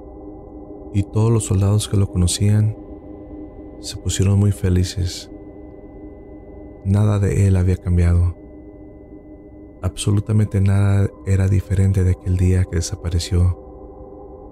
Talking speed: 105 wpm